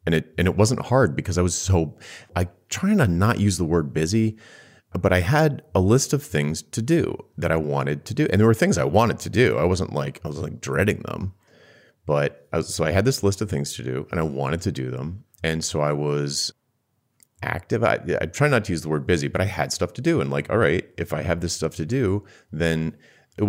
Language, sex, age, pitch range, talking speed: English, male, 30-49, 75-100 Hz, 255 wpm